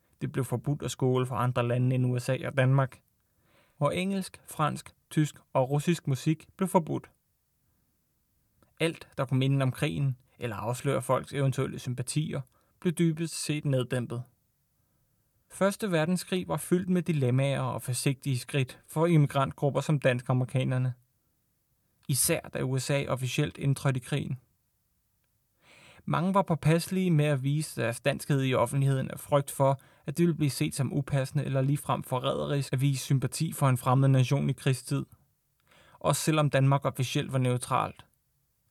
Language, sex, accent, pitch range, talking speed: Danish, male, native, 130-155 Hz, 145 wpm